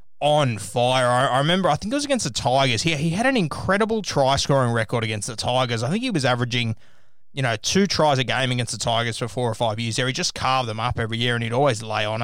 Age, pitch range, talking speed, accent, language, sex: 20-39, 115-150 Hz, 265 wpm, Australian, English, male